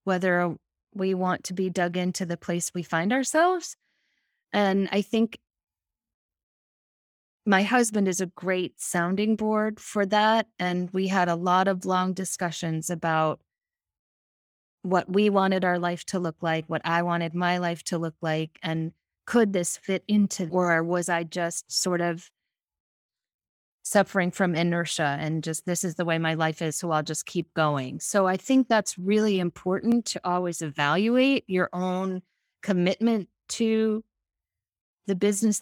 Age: 30-49